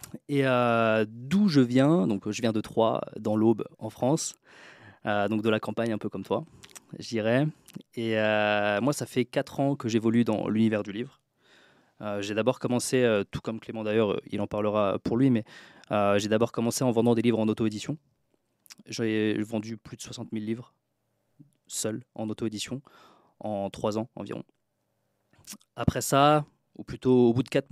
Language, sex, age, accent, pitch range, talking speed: French, male, 20-39, French, 110-125 Hz, 180 wpm